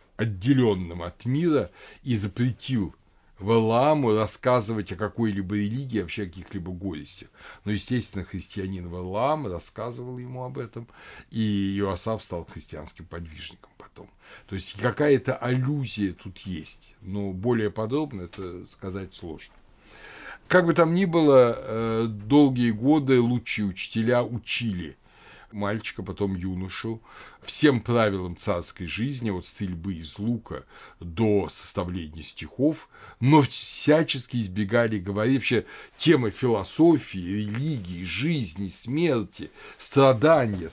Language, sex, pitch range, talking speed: Russian, male, 95-125 Hz, 110 wpm